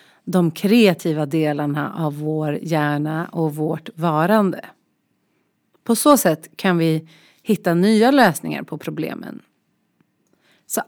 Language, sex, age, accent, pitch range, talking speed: Swedish, female, 30-49, native, 155-220 Hz, 110 wpm